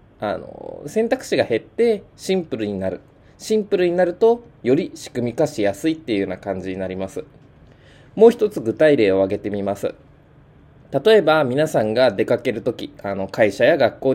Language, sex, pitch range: Japanese, male, 115-190 Hz